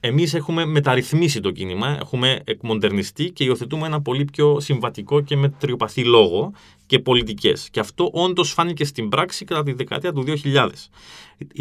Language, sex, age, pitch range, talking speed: Greek, male, 30-49, 105-145 Hz, 150 wpm